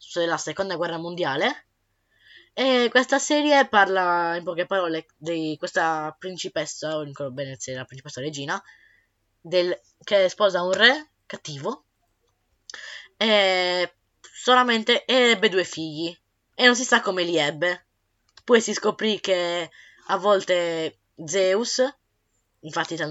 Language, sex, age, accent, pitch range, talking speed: Italian, female, 10-29, native, 155-200 Hz, 120 wpm